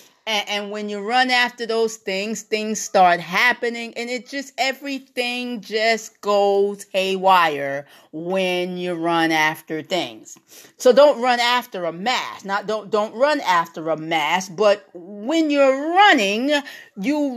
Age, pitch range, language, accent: 40-59, 195-270 Hz, English, American